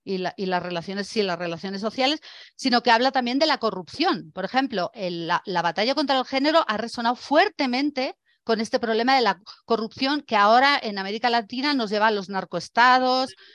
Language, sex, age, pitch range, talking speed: Spanish, female, 40-59, 200-255 Hz, 195 wpm